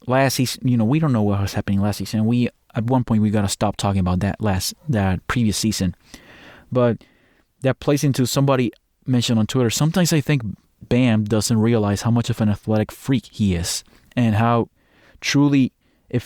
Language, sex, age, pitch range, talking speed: English, male, 20-39, 100-120 Hz, 200 wpm